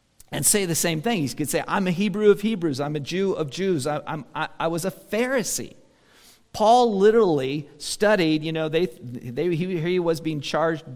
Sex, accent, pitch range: male, American, 135-170 Hz